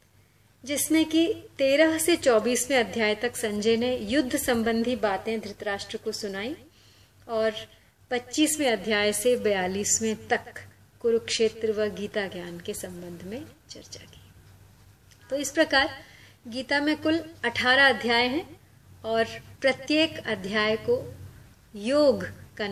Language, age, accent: Hindi, 30-49, native